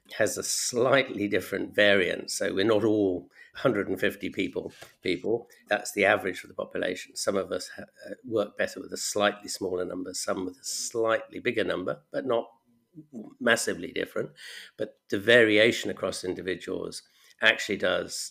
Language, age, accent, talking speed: English, 50-69, British, 150 wpm